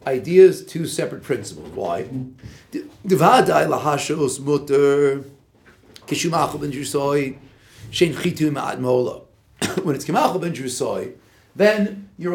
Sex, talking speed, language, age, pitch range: male, 55 wpm, English, 50-69, 130-180 Hz